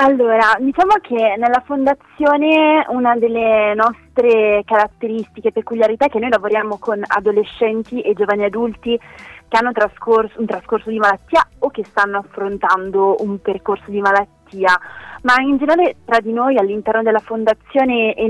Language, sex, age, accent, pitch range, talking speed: Italian, female, 20-39, native, 200-235 Hz, 145 wpm